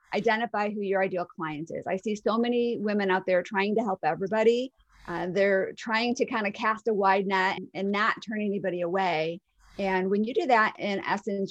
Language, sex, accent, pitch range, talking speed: English, female, American, 190-230 Hz, 205 wpm